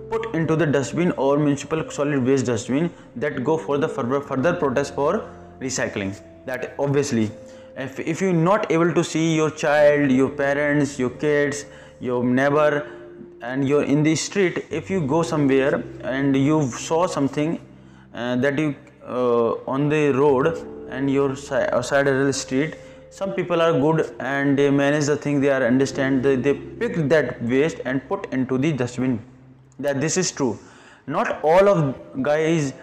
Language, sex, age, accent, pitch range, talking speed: English, male, 20-39, Indian, 130-160 Hz, 170 wpm